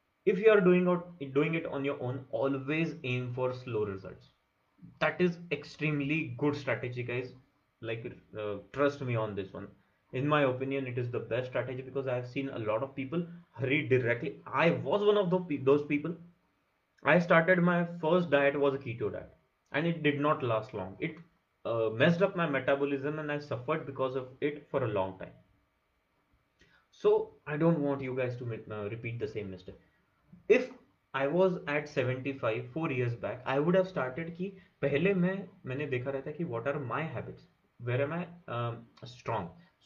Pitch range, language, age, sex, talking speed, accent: 125-165 Hz, Hindi, 20-39, male, 220 wpm, native